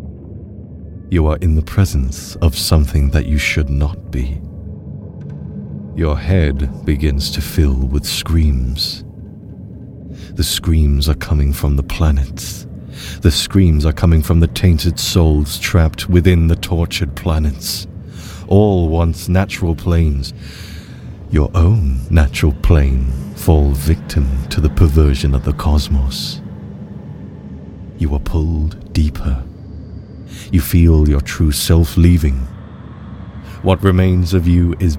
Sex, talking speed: male, 120 wpm